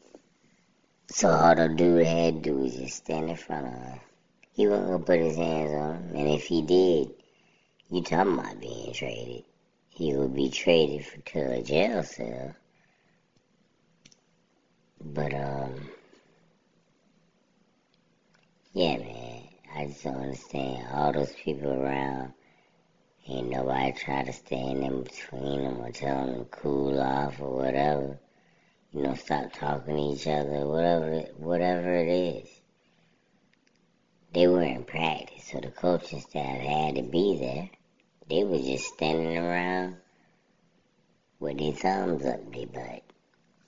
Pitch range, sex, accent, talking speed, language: 70-85 Hz, male, American, 140 wpm, English